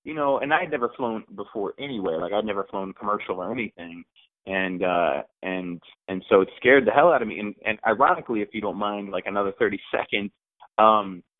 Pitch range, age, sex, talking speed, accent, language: 100-150 Hz, 30-49, male, 210 wpm, American, English